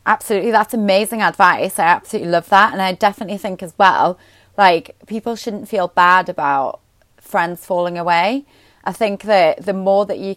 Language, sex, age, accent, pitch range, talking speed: English, female, 30-49, British, 175-215 Hz, 175 wpm